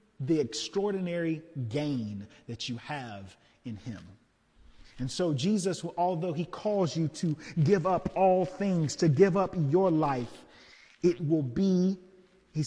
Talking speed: 135 wpm